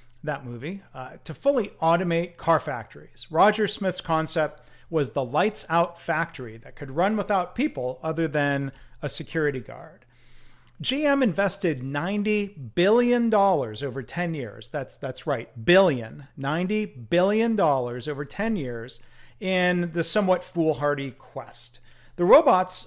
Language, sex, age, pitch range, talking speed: English, male, 40-59, 135-180 Hz, 135 wpm